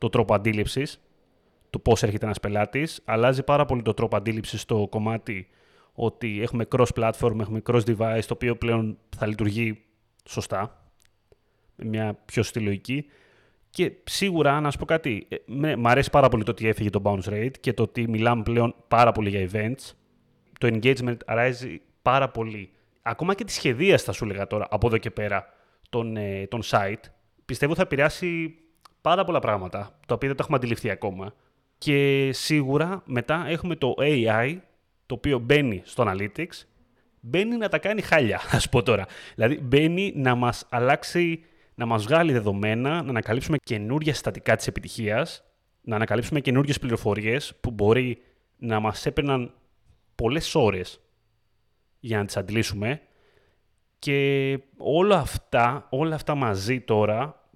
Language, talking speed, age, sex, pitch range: Greek, 150 wpm, 30-49, male, 110-140 Hz